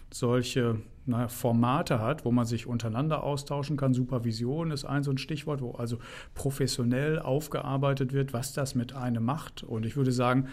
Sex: male